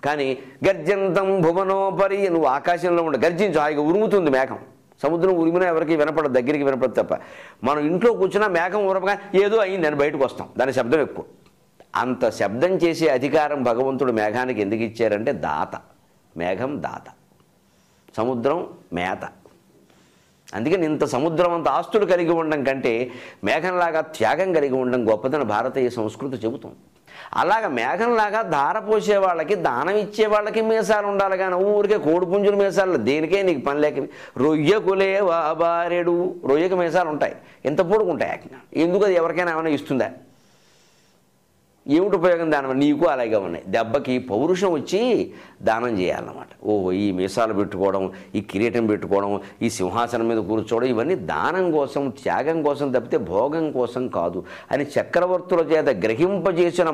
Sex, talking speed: male, 130 wpm